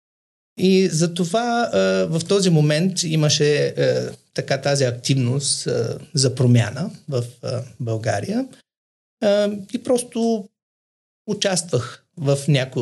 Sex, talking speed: male, 85 wpm